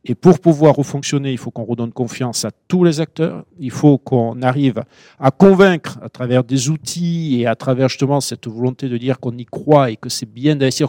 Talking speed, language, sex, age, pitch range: 215 wpm, French, male, 50-69, 120-150 Hz